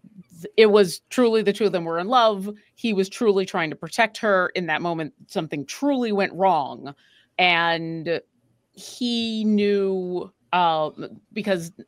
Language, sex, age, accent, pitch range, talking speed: English, female, 30-49, American, 165-215 Hz, 145 wpm